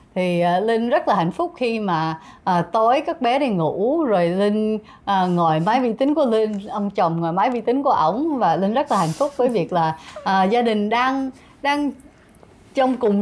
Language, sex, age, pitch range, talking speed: Vietnamese, female, 20-39, 185-255 Hz, 215 wpm